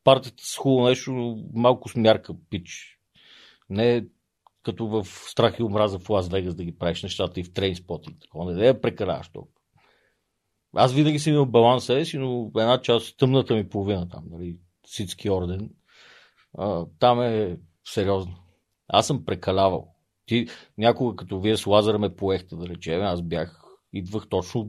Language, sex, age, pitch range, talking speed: Bulgarian, male, 40-59, 95-120 Hz, 160 wpm